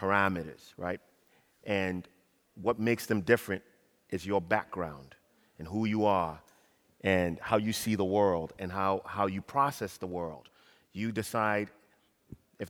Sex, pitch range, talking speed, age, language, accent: male, 95-125 Hz, 140 wpm, 30-49, English, American